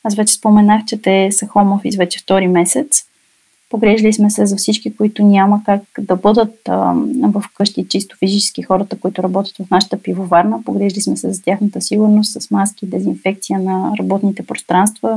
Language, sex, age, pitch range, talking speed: Bulgarian, female, 30-49, 195-230 Hz, 170 wpm